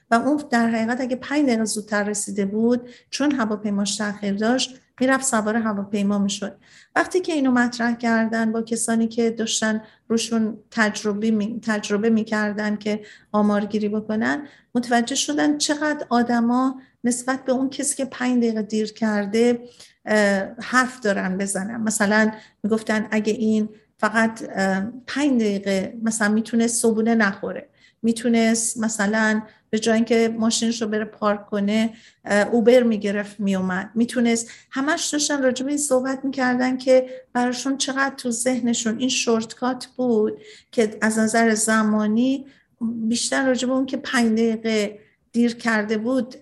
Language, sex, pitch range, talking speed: Persian, female, 215-255 Hz, 135 wpm